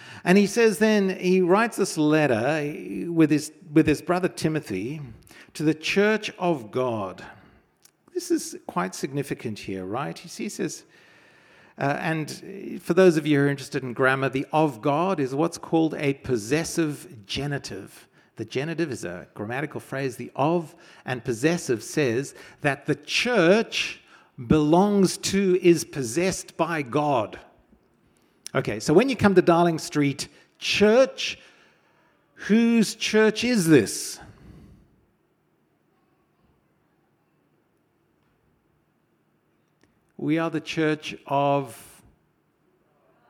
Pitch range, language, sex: 140-190 Hz, English, male